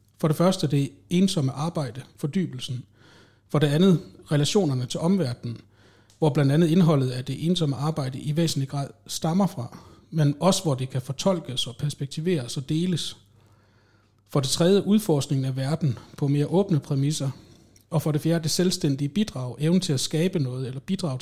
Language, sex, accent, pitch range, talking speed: Danish, male, native, 130-165 Hz, 170 wpm